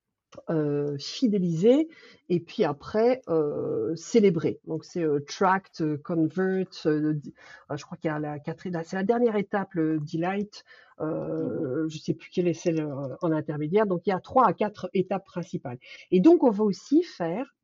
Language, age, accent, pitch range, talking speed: French, 50-69, French, 160-220 Hz, 185 wpm